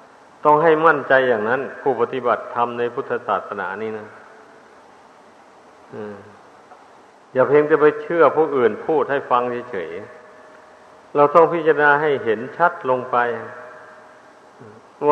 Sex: male